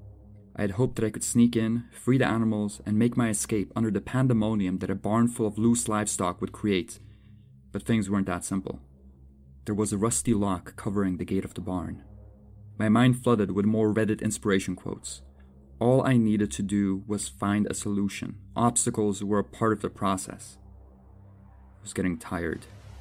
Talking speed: 185 wpm